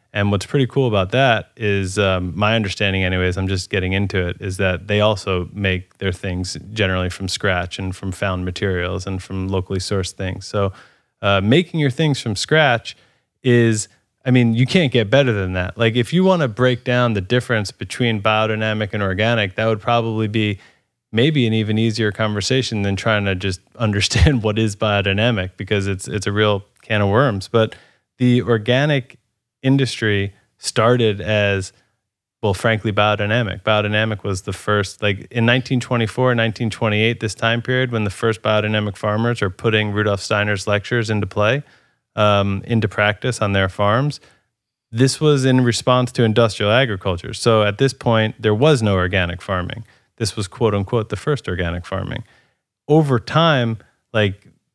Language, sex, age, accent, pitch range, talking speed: English, male, 20-39, American, 100-120 Hz, 170 wpm